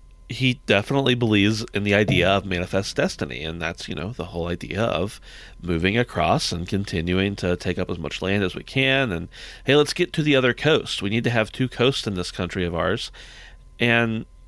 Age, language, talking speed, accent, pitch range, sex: 30-49, English, 205 wpm, American, 95-125 Hz, male